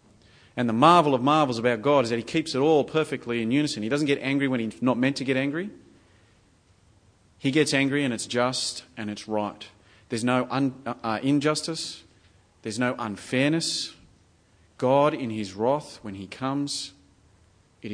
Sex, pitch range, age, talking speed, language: male, 100-135 Hz, 30-49, 175 wpm, English